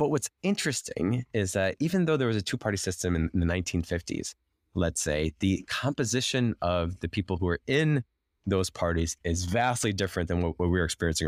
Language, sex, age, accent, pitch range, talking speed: English, male, 20-39, American, 85-115 Hz, 185 wpm